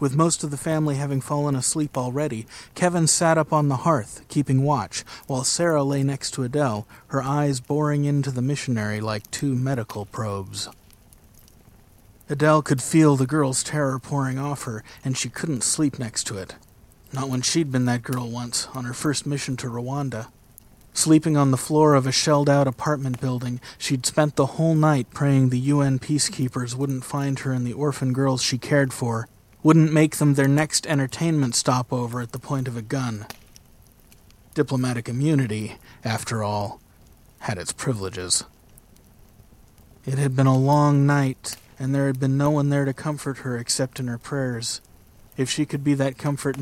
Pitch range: 120-145 Hz